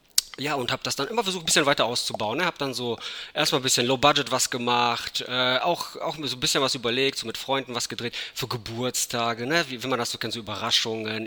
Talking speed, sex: 245 wpm, male